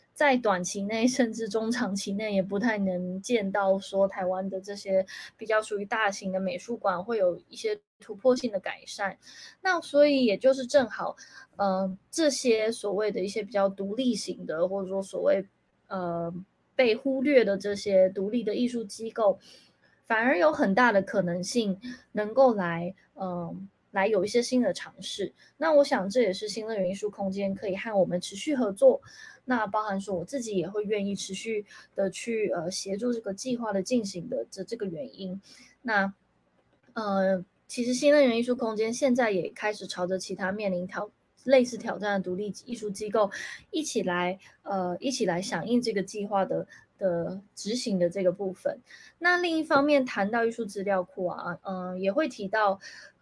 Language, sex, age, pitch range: Indonesian, female, 20-39, 190-240 Hz